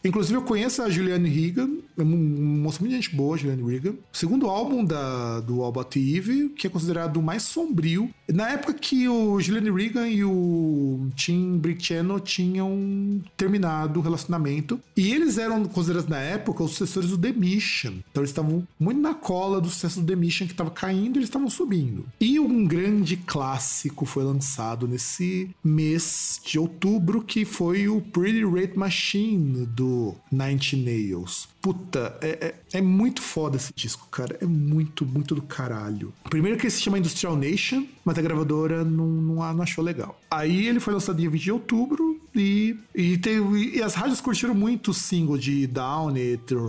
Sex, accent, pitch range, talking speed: male, Brazilian, 155-205 Hz, 175 wpm